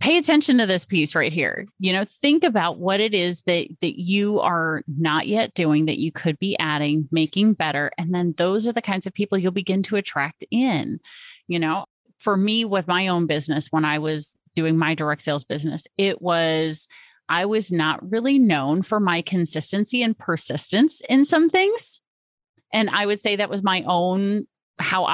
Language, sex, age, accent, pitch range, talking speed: English, female, 30-49, American, 160-215 Hz, 195 wpm